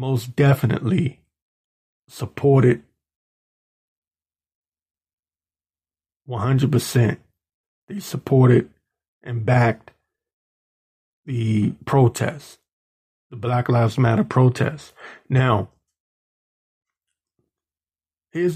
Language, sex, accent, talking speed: English, male, American, 60 wpm